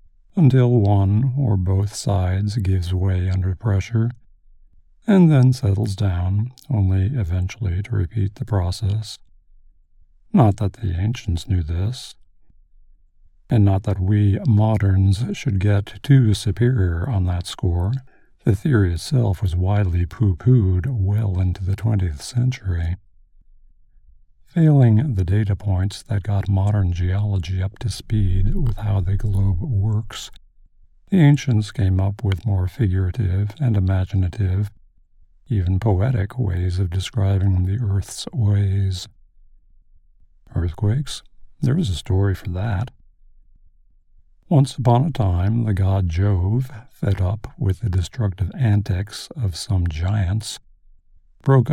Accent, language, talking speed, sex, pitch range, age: American, English, 120 wpm, male, 95-110 Hz, 50-69